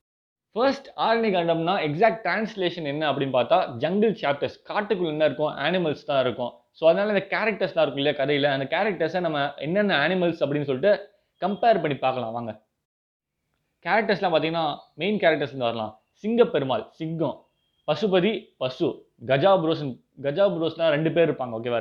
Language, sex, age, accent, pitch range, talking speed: Tamil, male, 20-39, native, 140-205 Hz, 140 wpm